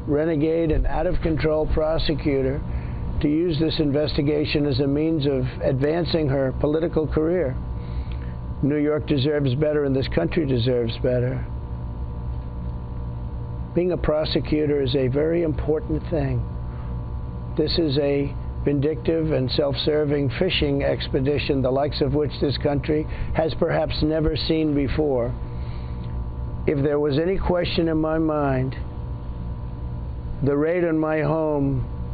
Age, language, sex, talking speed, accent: 50-69, English, male, 125 wpm, American